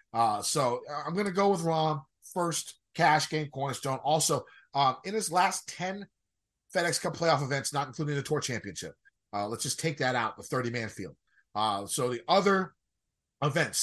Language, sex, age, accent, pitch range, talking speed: English, male, 30-49, American, 120-160 Hz, 180 wpm